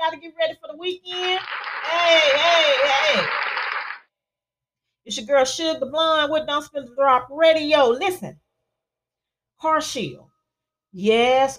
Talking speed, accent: 130 wpm, American